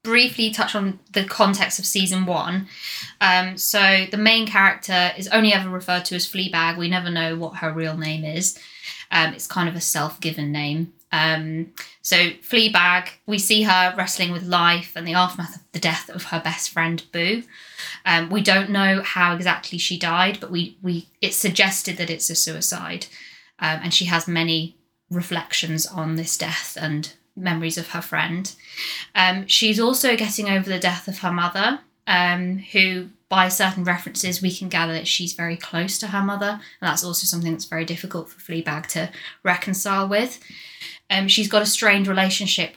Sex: female